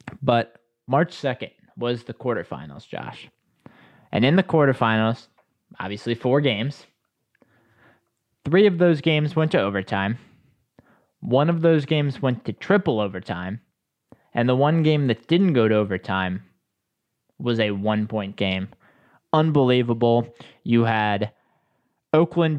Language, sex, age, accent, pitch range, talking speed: English, male, 20-39, American, 110-135 Hz, 120 wpm